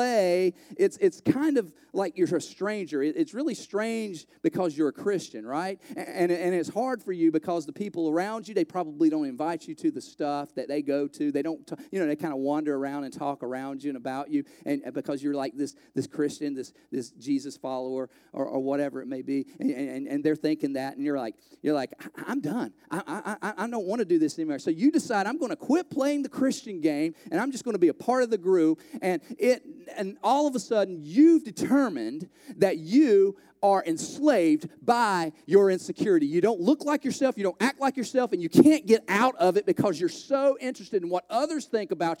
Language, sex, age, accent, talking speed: English, male, 40-59, American, 225 wpm